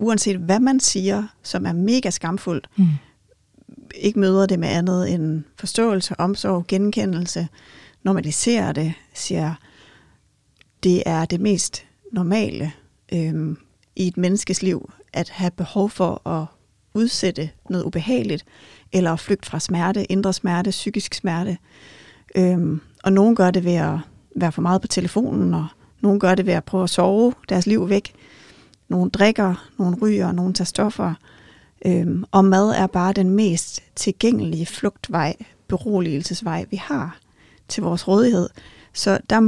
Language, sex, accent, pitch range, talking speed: Danish, female, native, 170-205 Hz, 145 wpm